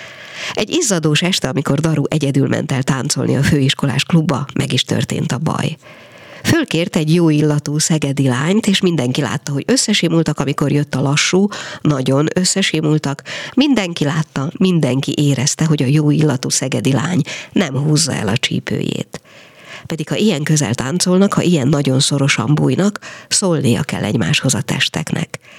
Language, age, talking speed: Hungarian, 50-69, 150 wpm